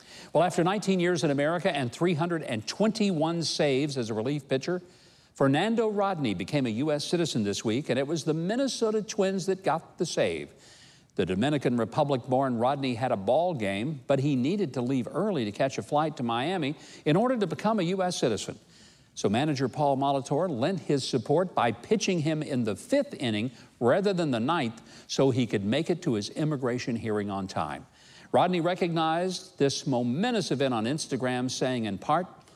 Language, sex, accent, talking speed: English, male, American, 180 wpm